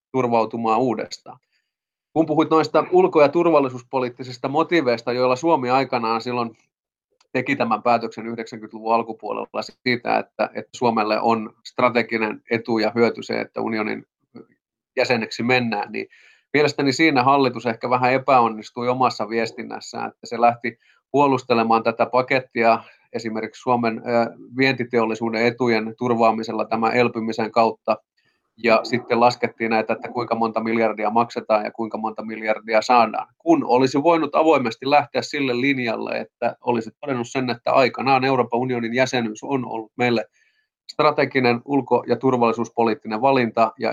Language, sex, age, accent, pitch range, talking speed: Finnish, male, 30-49, native, 115-130 Hz, 130 wpm